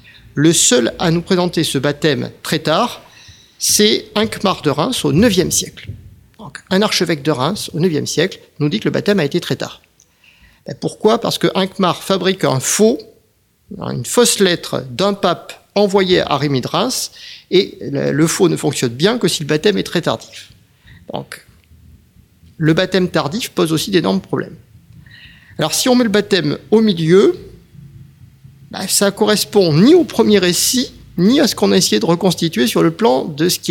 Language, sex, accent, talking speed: French, male, French, 180 wpm